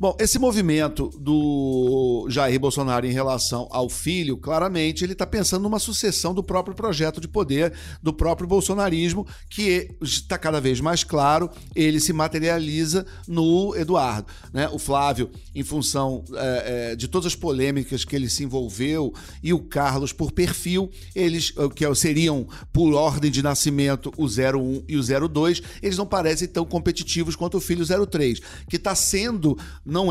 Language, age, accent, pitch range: Portuguese, 50-69, Brazilian, 135-180 Hz